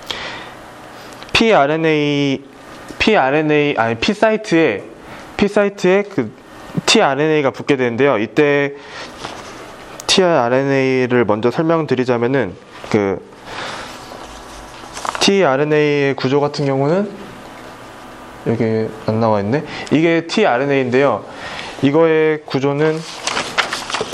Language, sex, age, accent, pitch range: Korean, male, 20-39, native, 130-170 Hz